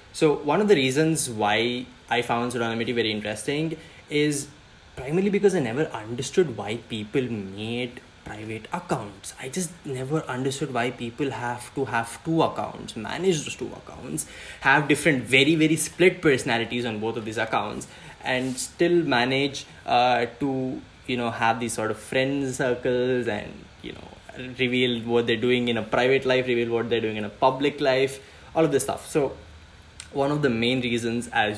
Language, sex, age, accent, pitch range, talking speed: English, male, 20-39, Indian, 115-145 Hz, 175 wpm